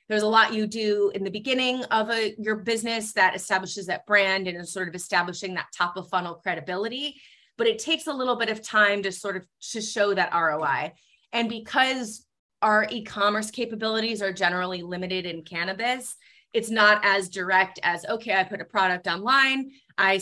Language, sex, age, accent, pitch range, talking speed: English, female, 30-49, American, 185-225 Hz, 185 wpm